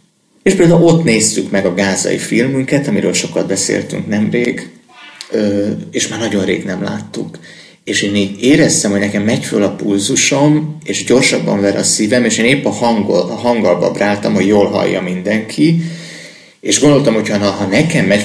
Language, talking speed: Hungarian, 165 wpm